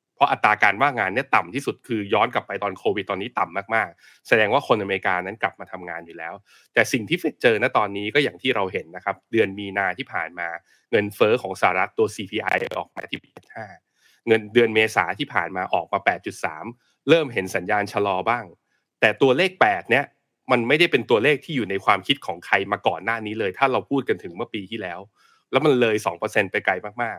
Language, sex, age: Thai, male, 20-39